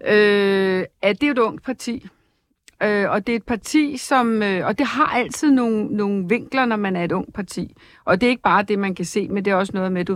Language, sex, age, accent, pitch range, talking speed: Danish, female, 50-69, native, 195-260 Hz, 260 wpm